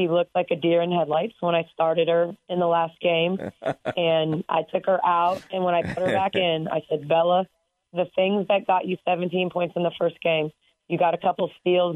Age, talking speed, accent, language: 30-49, 235 wpm, American, English